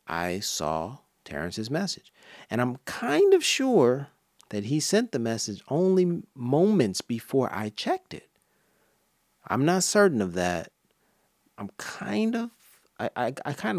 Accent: American